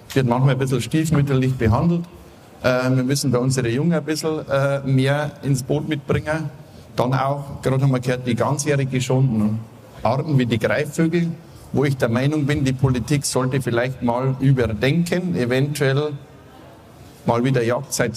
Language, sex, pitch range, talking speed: German, male, 125-150 Hz, 150 wpm